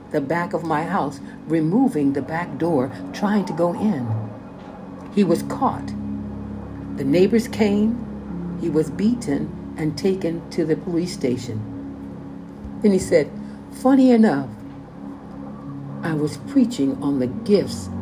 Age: 60-79